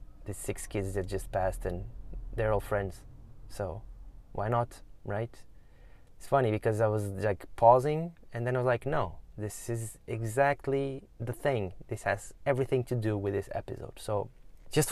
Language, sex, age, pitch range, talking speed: English, male, 20-39, 100-125 Hz, 170 wpm